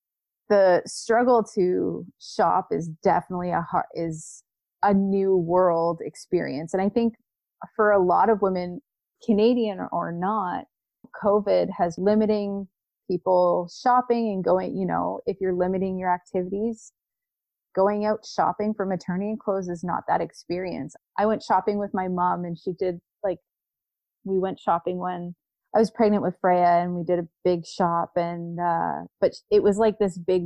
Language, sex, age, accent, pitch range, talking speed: English, female, 30-49, American, 175-205 Hz, 155 wpm